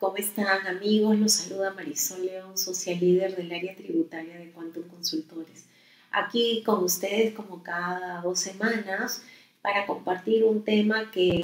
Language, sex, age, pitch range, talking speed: Spanish, female, 30-49, 175-210 Hz, 140 wpm